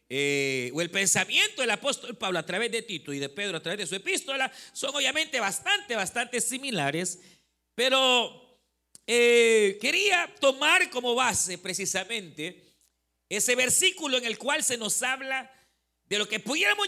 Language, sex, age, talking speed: Spanish, male, 50-69, 155 wpm